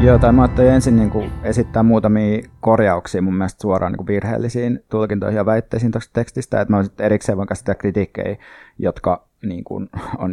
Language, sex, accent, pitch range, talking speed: Finnish, male, native, 95-115 Hz, 170 wpm